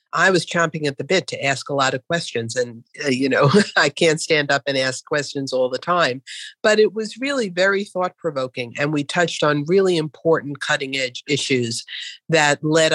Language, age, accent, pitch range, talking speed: English, 50-69, American, 130-165 Hz, 195 wpm